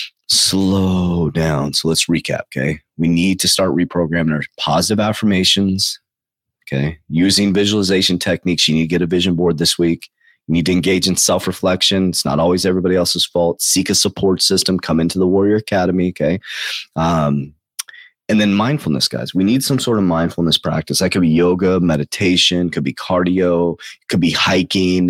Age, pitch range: 30-49, 85-95 Hz